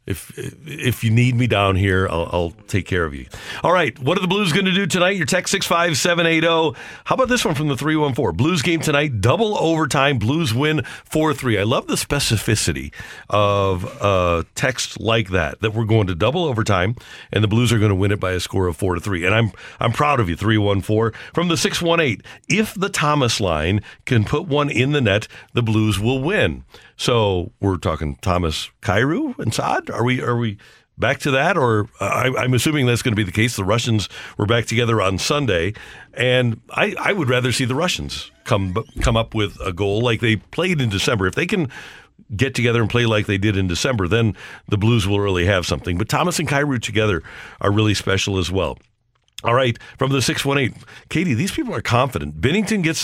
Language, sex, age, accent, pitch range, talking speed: English, male, 50-69, American, 100-145 Hz, 210 wpm